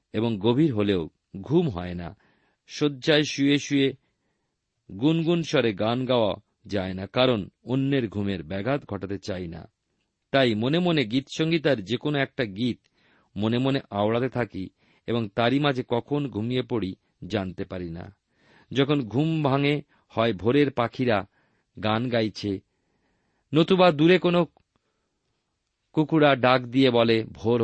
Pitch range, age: 105-145 Hz, 50-69